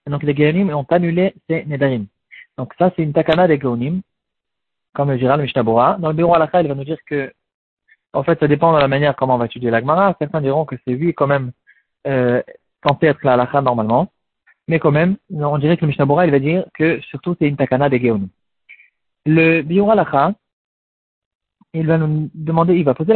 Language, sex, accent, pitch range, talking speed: French, male, French, 135-175 Hz, 210 wpm